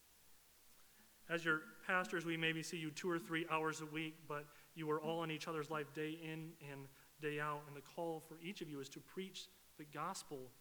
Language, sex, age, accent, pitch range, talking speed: English, male, 30-49, American, 150-185 Hz, 215 wpm